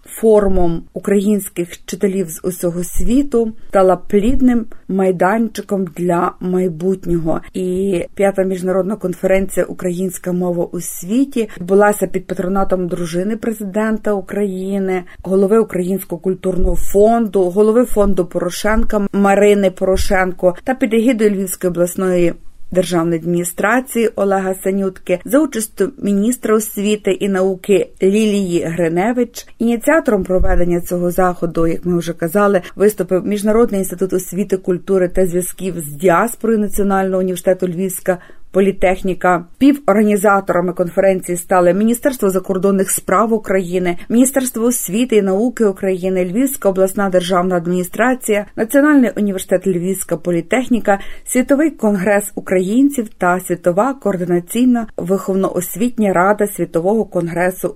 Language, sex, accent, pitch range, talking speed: Ukrainian, female, native, 180-215 Hz, 105 wpm